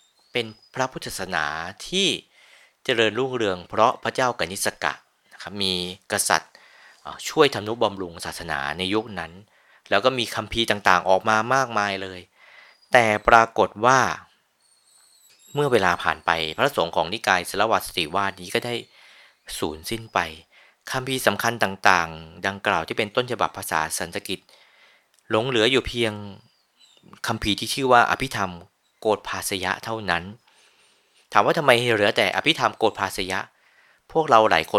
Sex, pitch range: male, 90-115 Hz